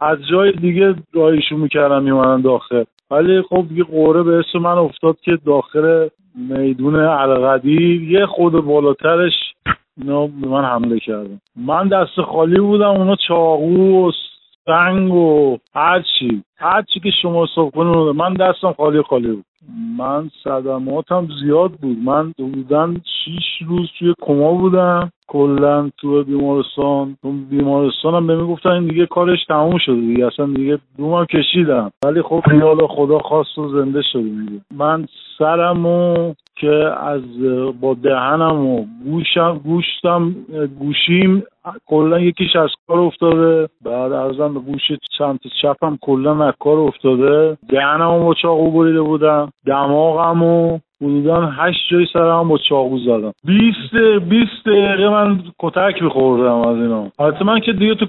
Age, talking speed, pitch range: 50-69, 140 wpm, 140-175 Hz